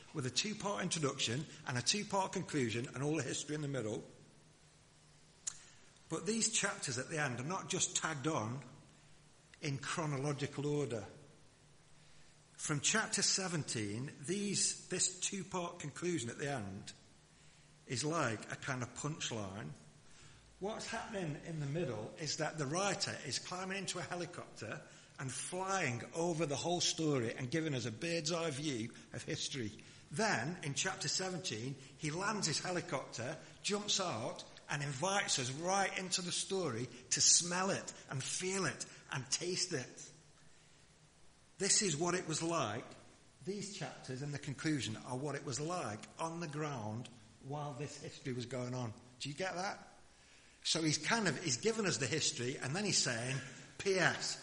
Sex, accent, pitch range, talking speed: male, British, 130-175 Hz, 155 wpm